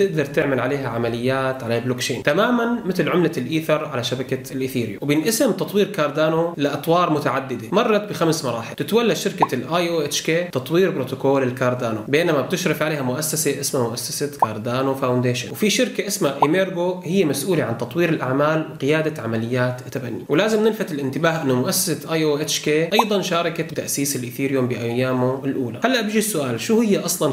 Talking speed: 155 wpm